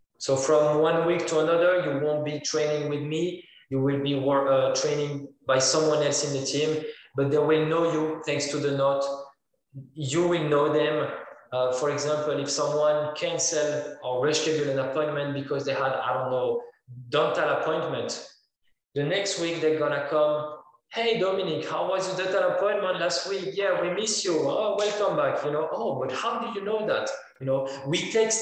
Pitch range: 140-185 Hz